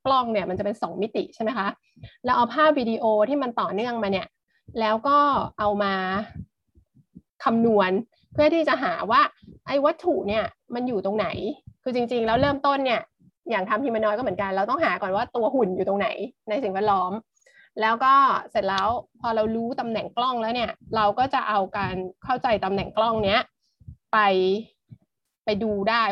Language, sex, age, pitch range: Thai, female, 20-39, 200-250 Hz